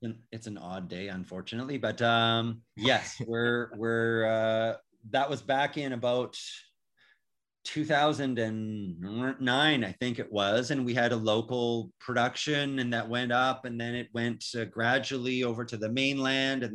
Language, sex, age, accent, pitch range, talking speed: English, male, 30-49, American, 115-135 Hz, 150 wpm